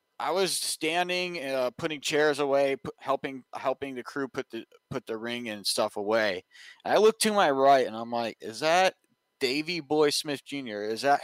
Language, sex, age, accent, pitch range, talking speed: English, male, 30-49, American, 115-145 Hz, 200 wpm